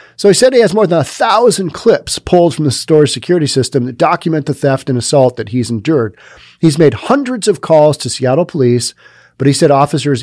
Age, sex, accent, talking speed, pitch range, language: 40-59, male, American, 215 wpm, 120-160 Hz, English